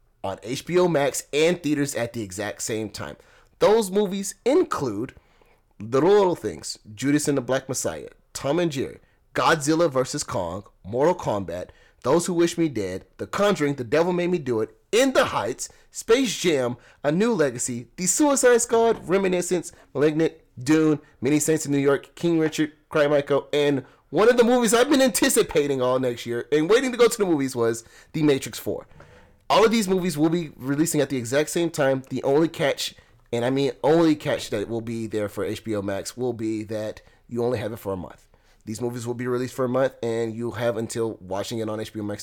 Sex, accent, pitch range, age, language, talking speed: male, American, 115-160 Hz, 30-49, English, 200 wpm